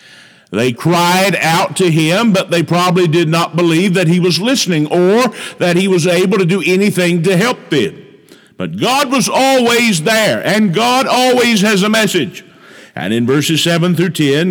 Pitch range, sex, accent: 150-200 Hz, male, American